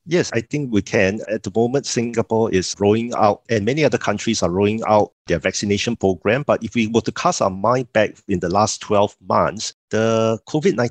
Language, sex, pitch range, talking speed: English, male, 95-125 Hz, 210 wpm